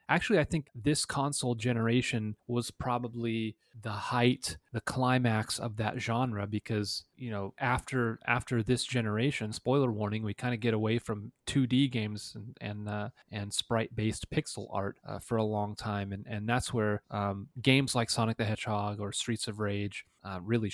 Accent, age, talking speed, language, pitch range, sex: American, 30-49, 175 wpm, English, 110-135 Hz, male